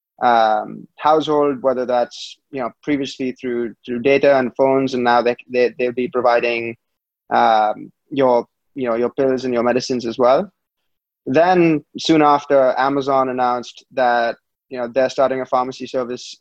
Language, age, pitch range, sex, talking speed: English, 20-39, 120-140 Hz, male, 155 wpm